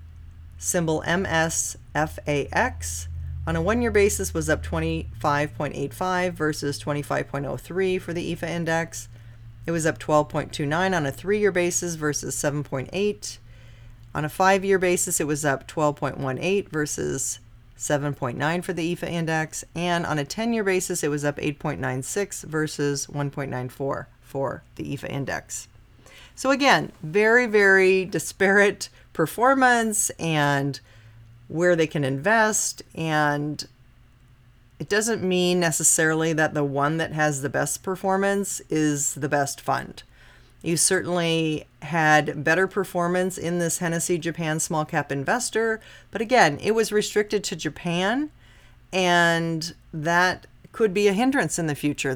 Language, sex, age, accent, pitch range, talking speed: English, female, 30-49, American, 140-185 Hz, 125 wpm